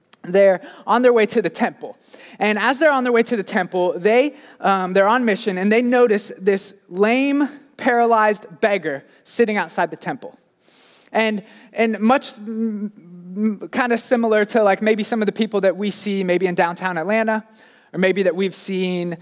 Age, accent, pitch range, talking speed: 20-39, American, 190-235 Hz, 185 wpm